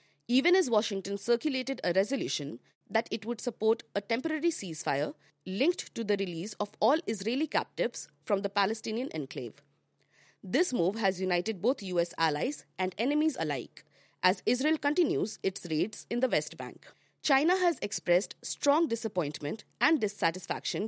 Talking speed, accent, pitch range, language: 145 wpm, Indian, 195-275 Hz, English